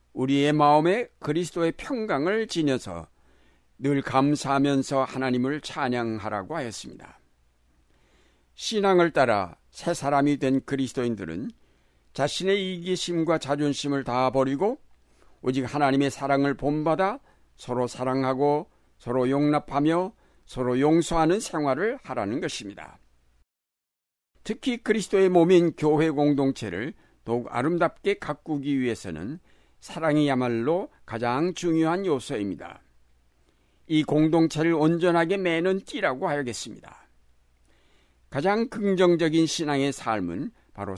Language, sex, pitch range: Korean, male, 115-165 Hz